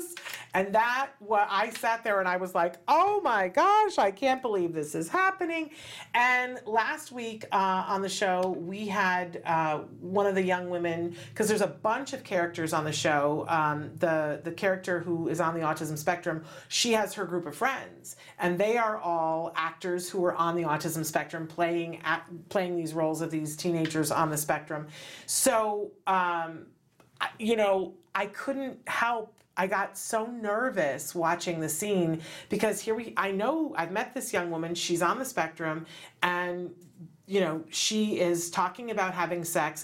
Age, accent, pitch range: 40-59, American, 160-205 Hz